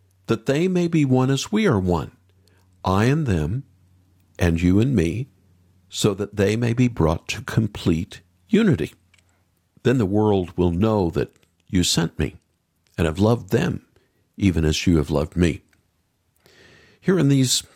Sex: male